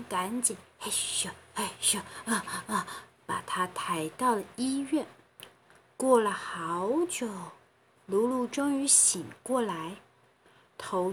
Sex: female